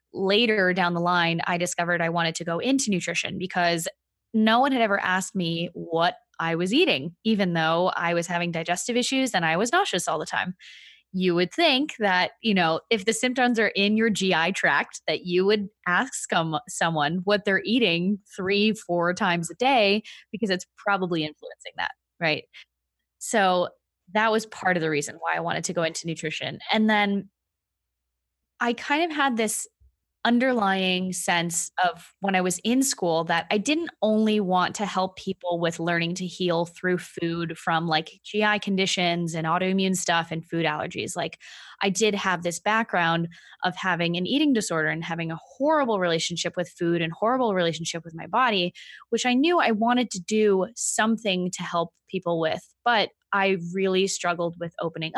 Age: 20-39